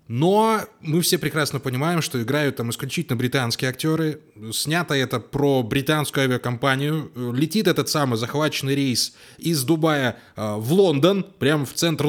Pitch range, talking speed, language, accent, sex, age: 125-170 Hz, 140 wpm, Russian, native, male, 20-39